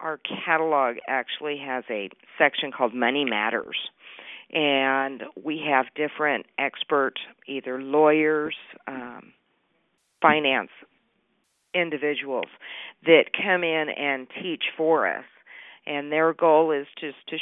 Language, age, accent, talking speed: English, 50-69, American, 110 wpm